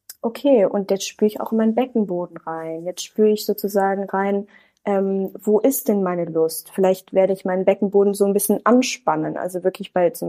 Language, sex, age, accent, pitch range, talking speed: German, female, 20-39, German, 185-215 Hz, 190 wpm